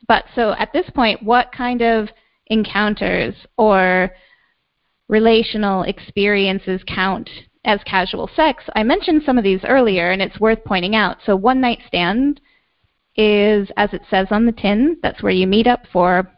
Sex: female